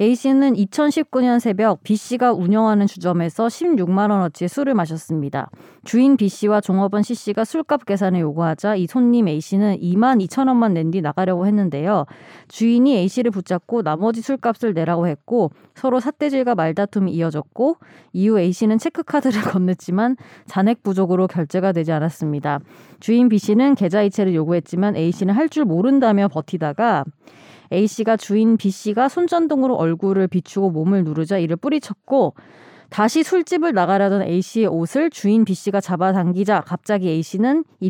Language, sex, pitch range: Korean, female, 180-250 Hz